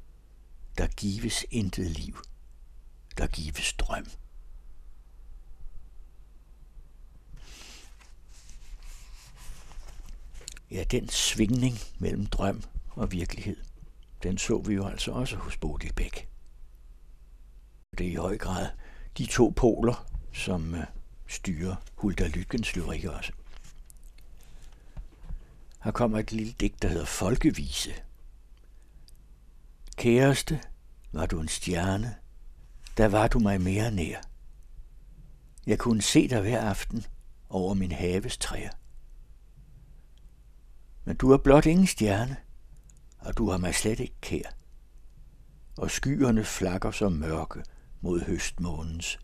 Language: Danish